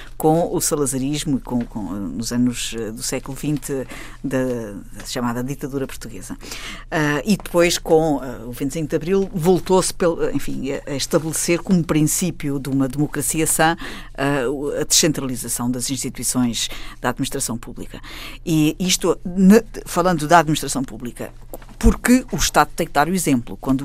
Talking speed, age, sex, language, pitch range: 150 wpm, 50-69, female, Portuguese, 135-165 Hz